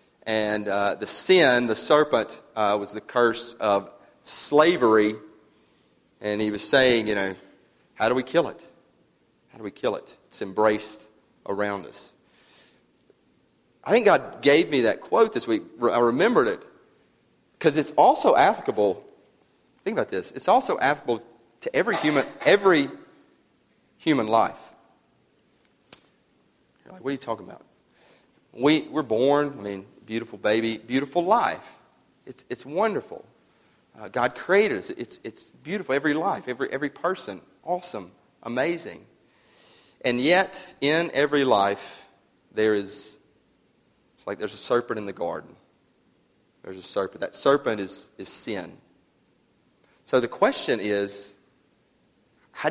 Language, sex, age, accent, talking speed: English, male, 40-59, American, 140 wpm